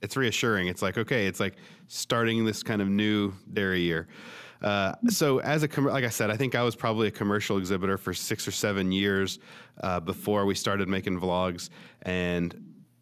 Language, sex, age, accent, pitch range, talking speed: English, male, 30-49, American, 95-120 Hz, 190 wpm